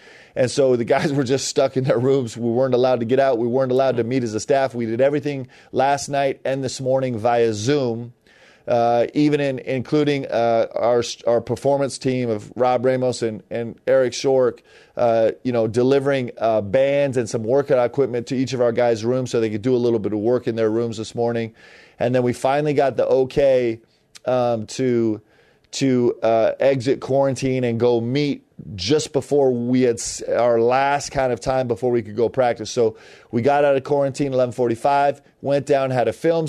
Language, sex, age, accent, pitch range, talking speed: English, male, 30-49, American, 120-140 Hz, 200 wpm